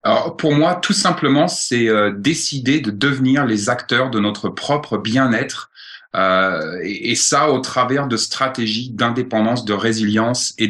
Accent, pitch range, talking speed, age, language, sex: French, 105-130 Hz, 155 wpm, 30-49, French, male